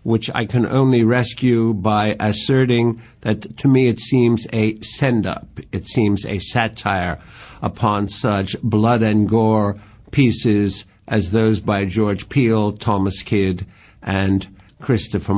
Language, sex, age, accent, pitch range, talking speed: English, male, 60-79, American, 100-120 Hz, 130 wpm